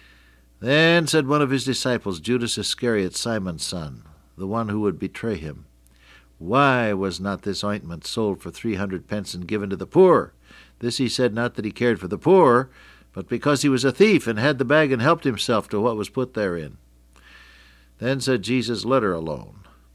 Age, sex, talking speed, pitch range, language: 60-79, male, 195 wpm, 80-120 Hz, English